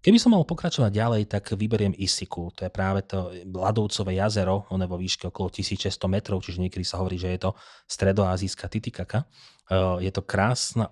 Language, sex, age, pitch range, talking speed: Slovak, male, 30-49, 95-110 Hz, 175 wpm